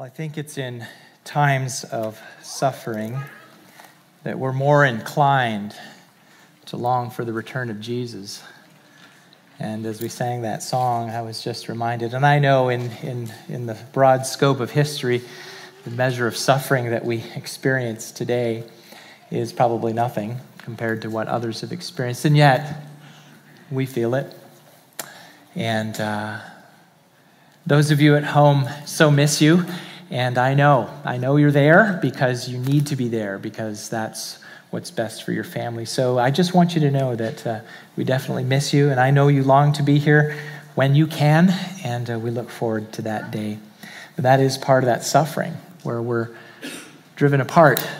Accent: American